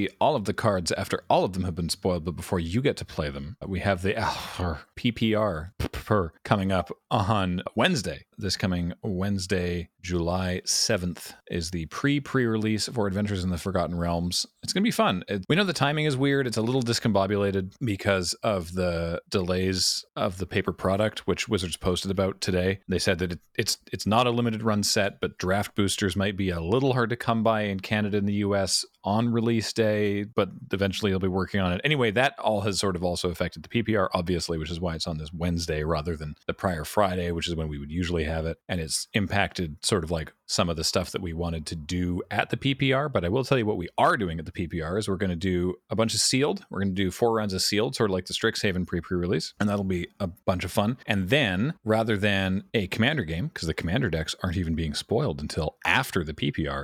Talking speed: 230 wpm